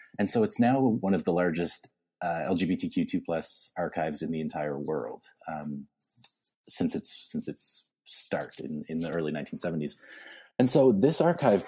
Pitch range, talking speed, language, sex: 80-110 Hz, 155 wpm, English, male